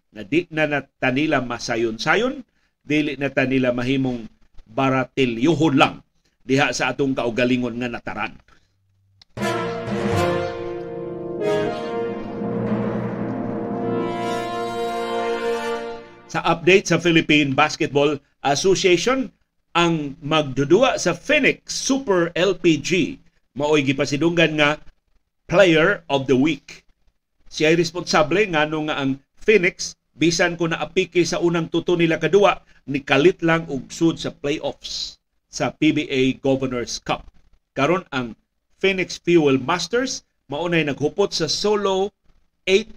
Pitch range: 125-170 Hz